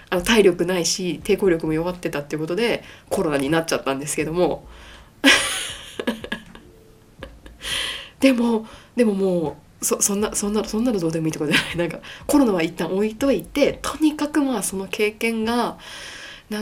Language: Japanese